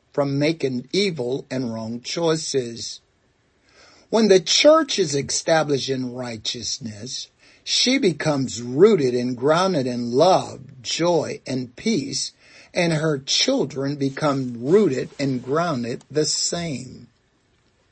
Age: 60-79